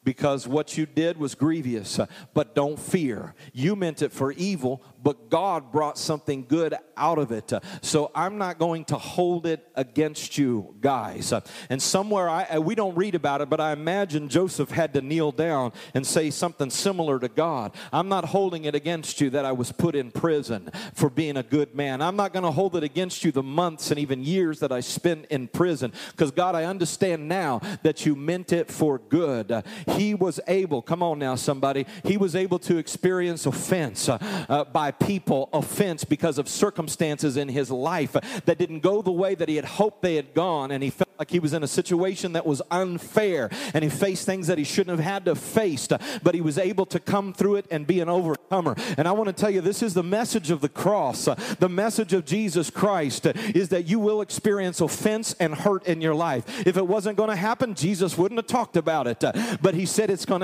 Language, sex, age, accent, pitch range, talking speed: English, male, 40-59, American, 150-195 Hz, 215 wpm